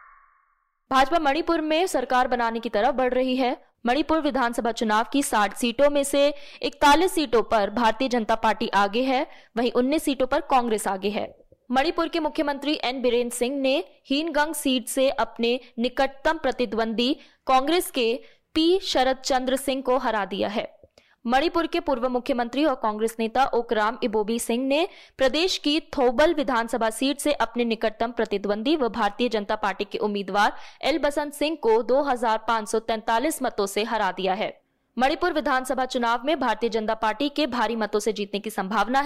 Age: 20-39